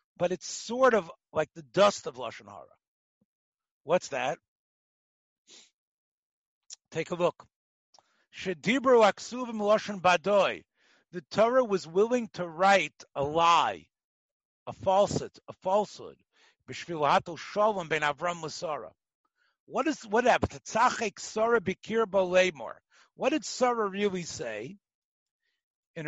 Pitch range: 175-230 Hz